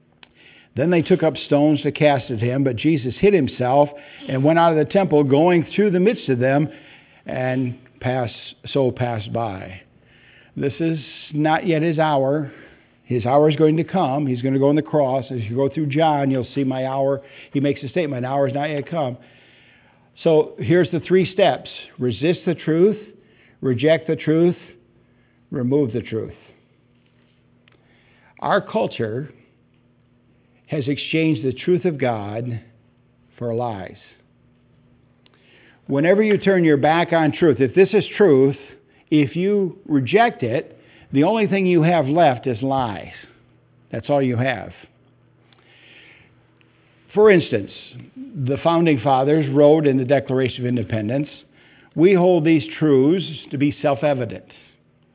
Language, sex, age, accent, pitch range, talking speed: English, male, 60-79, American, 125-160 Hz, 150 wpm